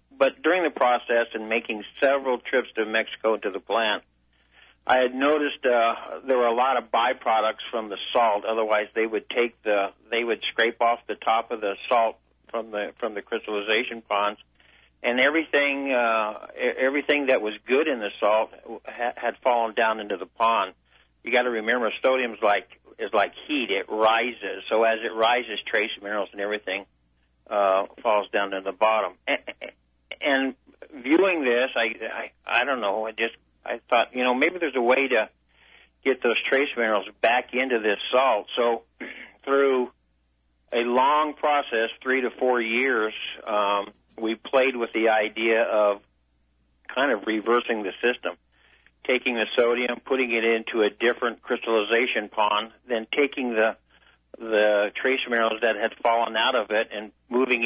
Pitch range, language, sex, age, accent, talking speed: 105-125 Hz, English, male, 50-69, American, 165 wpm